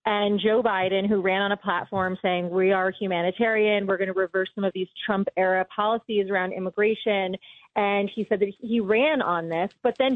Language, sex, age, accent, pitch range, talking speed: English, female, 30-49, American, 195-245 Hz, 200 wpm